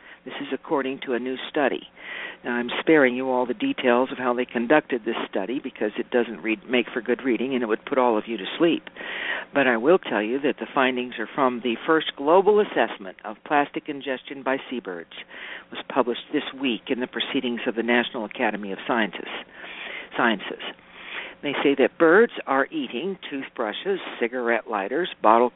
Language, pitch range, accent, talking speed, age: English, 120-145 Hz, American, 190 wpm, 60-79